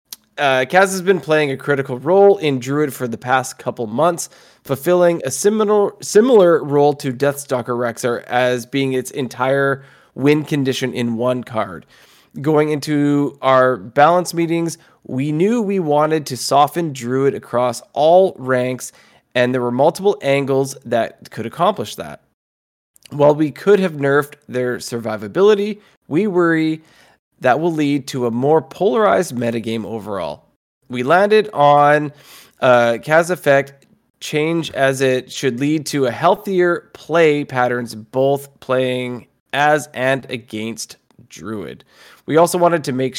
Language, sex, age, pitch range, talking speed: English, male, 20-39, 125-170 Hz, 140 wpm